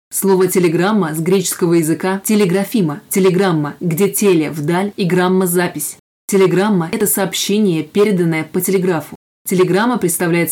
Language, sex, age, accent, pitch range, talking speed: Russian, female, 20-39, native, 175-195 Hz, 120 wpm